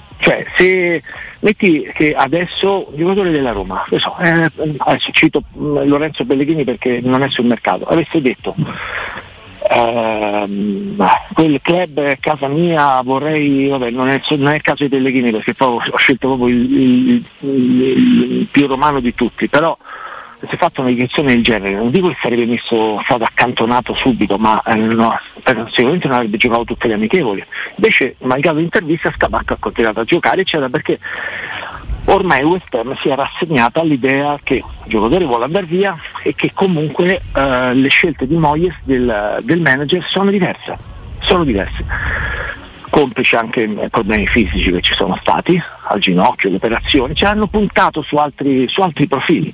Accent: native